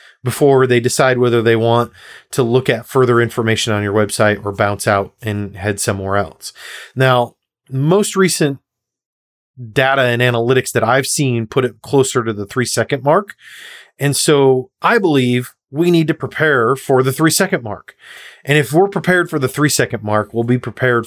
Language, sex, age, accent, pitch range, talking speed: English, male, 30-49, American, 120-155 Hz, 170 wpm